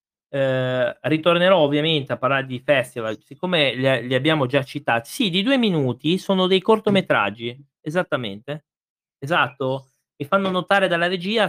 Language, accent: Italian, native